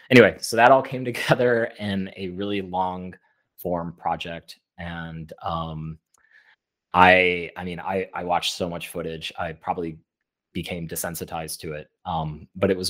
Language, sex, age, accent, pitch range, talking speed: English, male, 30-49, American, 80-95 Hz, 150 wpm